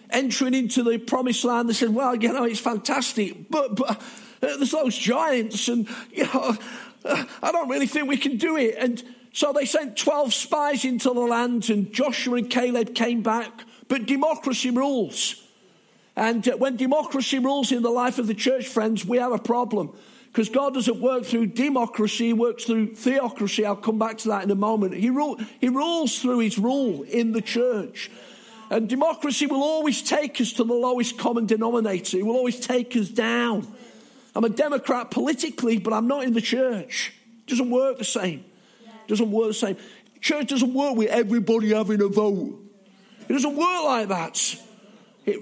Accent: British